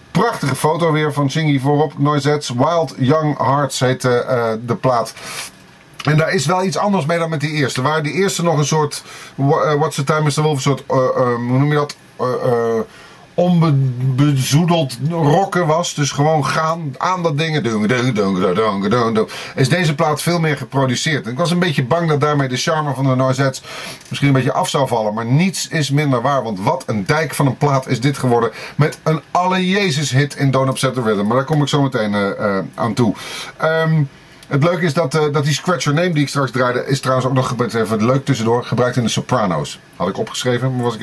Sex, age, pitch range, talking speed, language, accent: male, 30-49, 130-160 Hz, 225 wpm, Dutch, Dutch